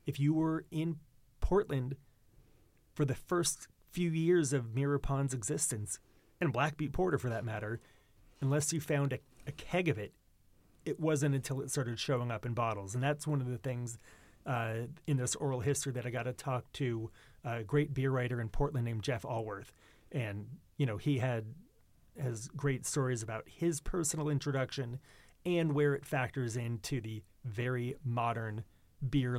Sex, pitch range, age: male, 115-145 Hz, 30-49